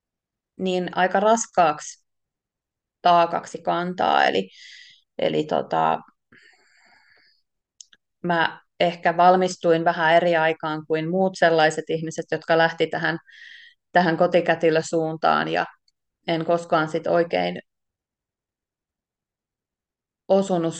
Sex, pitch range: female, 170-205 Hz